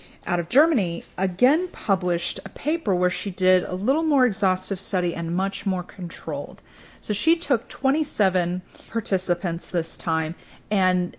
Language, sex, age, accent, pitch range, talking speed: English, female, 30-49, American, 170-205 Hz, 145 wpm